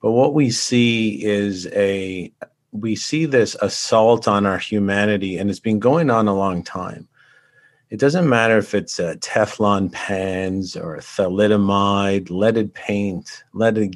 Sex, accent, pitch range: male, American, 100-115 Hz